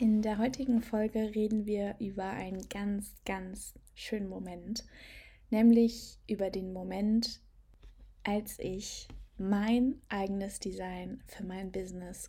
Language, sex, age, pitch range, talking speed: German, female, 20-39, 200-240 Hz, 115 wpm